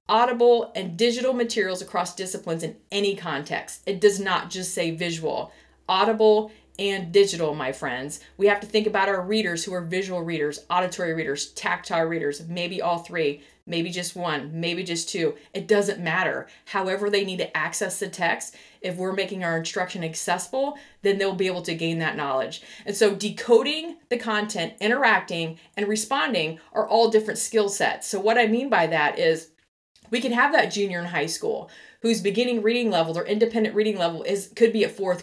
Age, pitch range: 30-49, 175-225 Hz